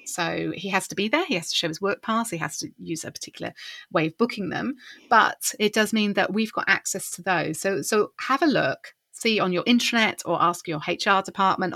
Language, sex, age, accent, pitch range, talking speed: English, female, 30-49, British, 170-235 Hz, 240 wpm